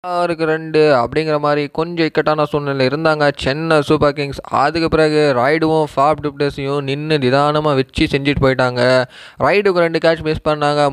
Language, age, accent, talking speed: Tamil, 20-39, native, 130 wpm